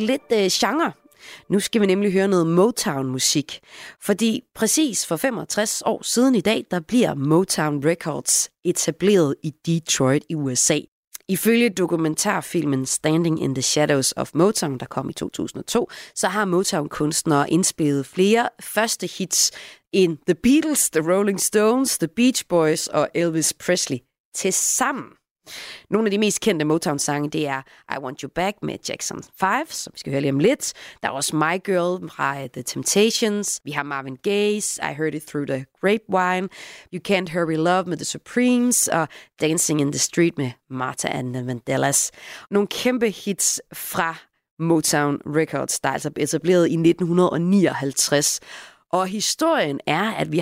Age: 30-49